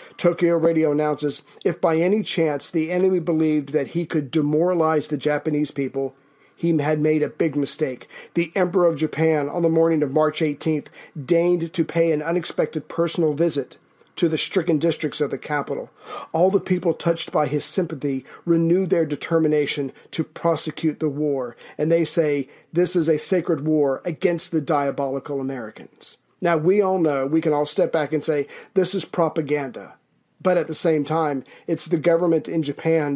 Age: 40-59